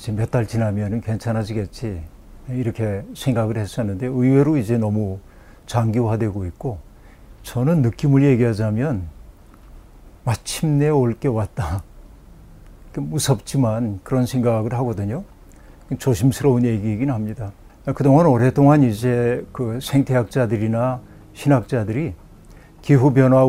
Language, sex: Korean, male